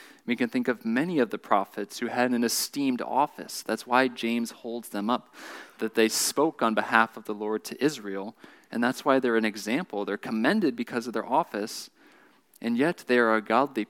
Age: 20-39